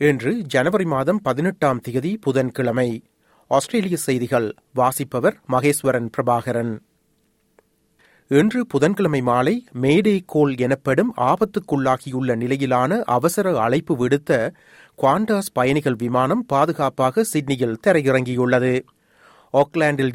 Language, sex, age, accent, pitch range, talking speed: Tamil, male, 30-49, native, 130-165 Hz, 85 wpm